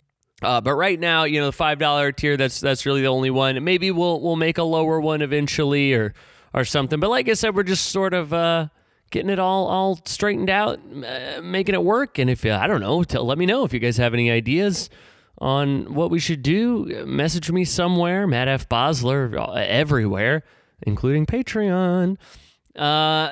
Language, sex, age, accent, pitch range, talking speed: English, male, 20-39, American, 120-170 Hz, 200 wpm